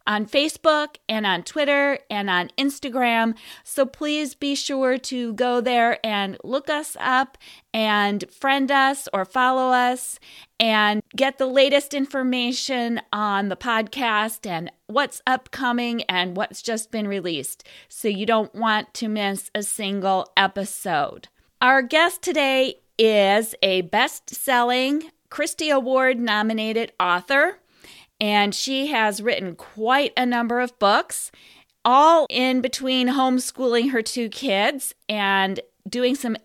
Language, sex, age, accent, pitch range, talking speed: English, female, 30-49, American, 200-260 Hz, 130 wpm